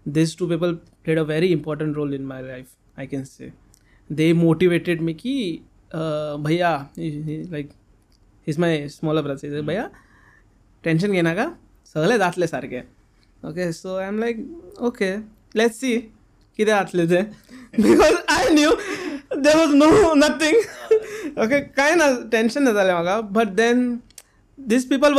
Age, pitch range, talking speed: 20-39, 155-215 Hz, 170 wpm